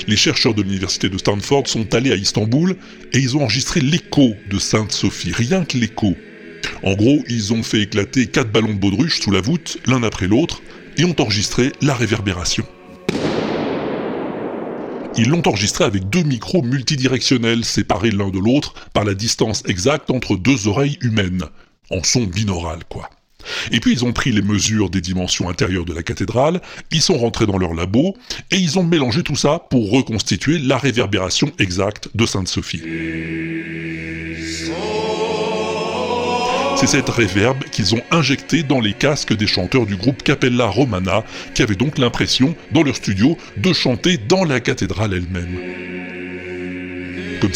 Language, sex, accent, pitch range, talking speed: French, female, French, 95-135 Hz, 160 wpm